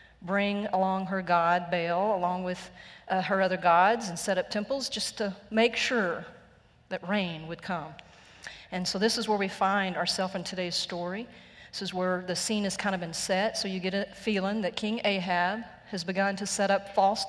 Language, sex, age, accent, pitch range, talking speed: English, female, 40-59, American, 180-210 Hz, 200 wpm